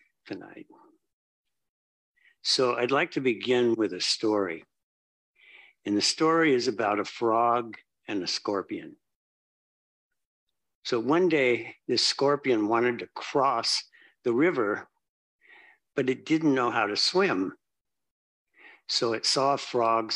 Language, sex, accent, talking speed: English, male, American, 120 wpm